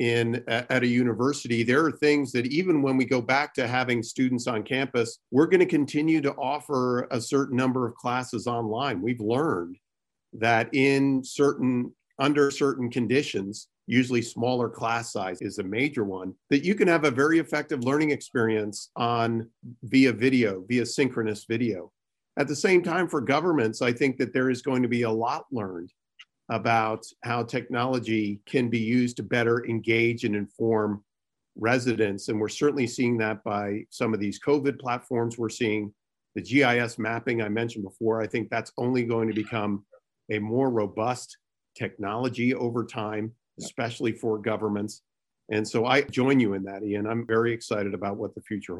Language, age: English, 50-69